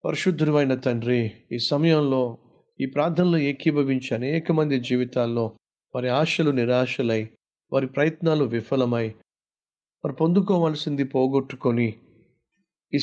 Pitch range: 125-160 Hz